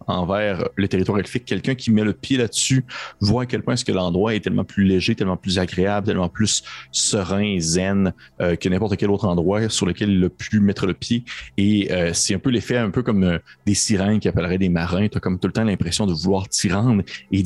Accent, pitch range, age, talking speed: Canadian, 90-105 Hz, 30-49, 245 wpm